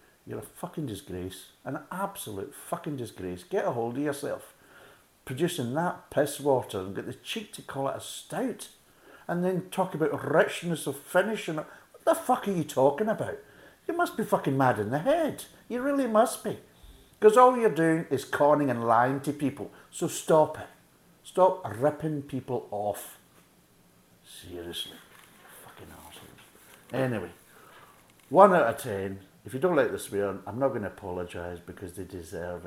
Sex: male